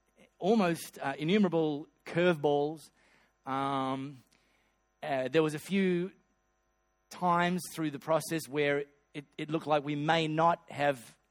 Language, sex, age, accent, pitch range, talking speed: English, male, 30-49, Australian, 130-150 Hz, 120 wpm